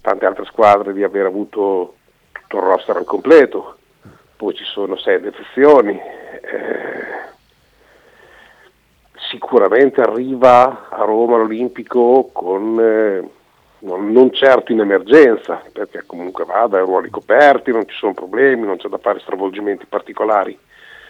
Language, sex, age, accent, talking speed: Italian, male, 50-69, native, 120 wpm